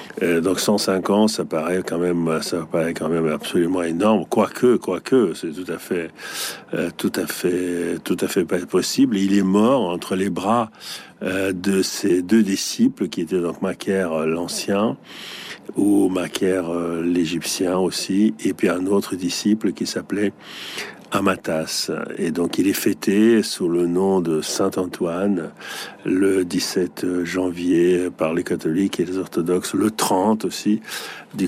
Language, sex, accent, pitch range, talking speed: French, male, French, 90-100 Hz, 155 wpm